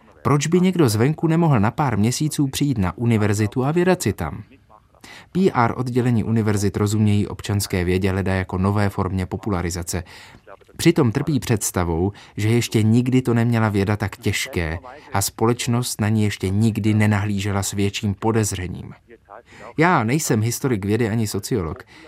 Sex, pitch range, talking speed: male, 100-120 Hz, 145 wpm